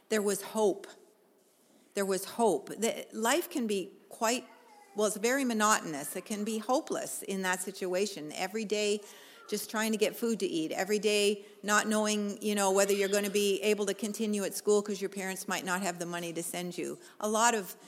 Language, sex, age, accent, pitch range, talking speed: English, female, 50-69, American, 180-220 Hz, 205 wpm